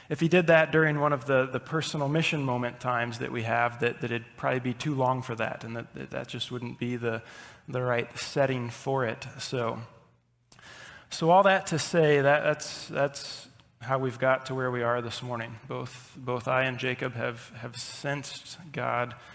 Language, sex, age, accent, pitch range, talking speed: English, male, 30-49, American, 120-140 Hz, 200 wpm